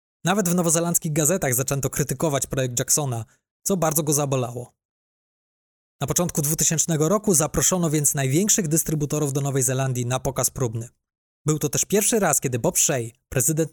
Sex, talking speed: male, 155 wpm